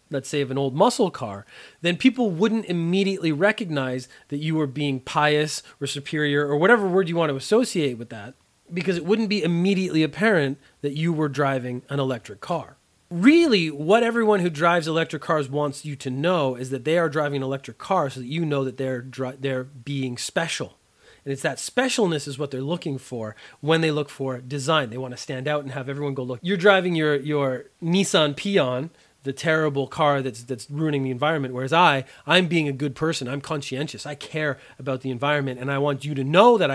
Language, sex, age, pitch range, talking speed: English, male, 30-49, 135-170 Hz, 210 wpm